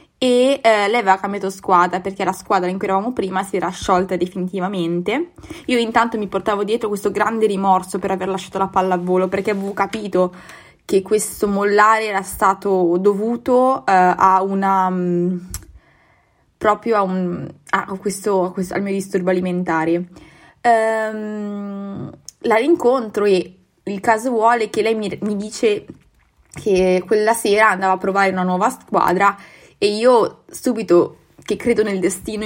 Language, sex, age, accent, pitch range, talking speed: Italian, female, 20-39, native, 185-220 Hz, 155 wpm